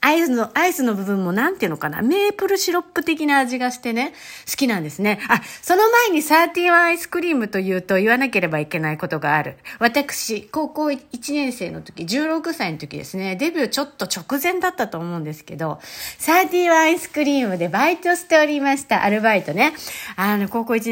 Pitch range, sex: 185-310 Hz, female